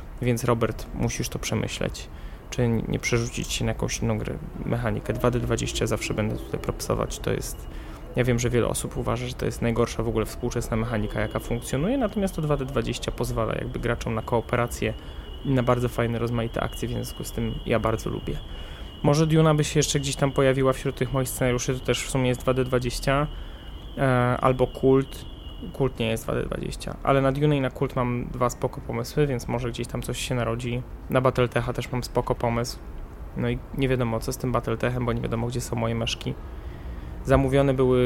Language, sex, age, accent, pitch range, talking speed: Polish, male, 20-39, native, 115-130 Hz, 195 wpm